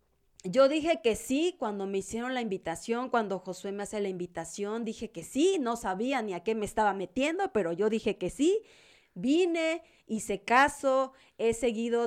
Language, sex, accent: Spanish, female, Mexican